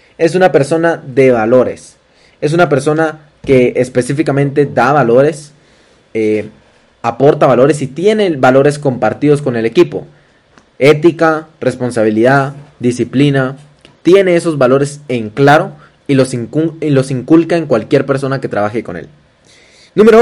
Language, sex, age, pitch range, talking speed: Spanish, male, 20-39, 130-165 Hz, 130 wpm